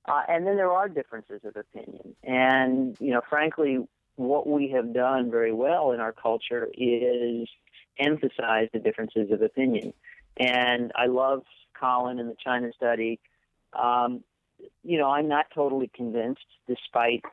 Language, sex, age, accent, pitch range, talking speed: English, male, 50-69, American, 115-135 Hz, 150 wpm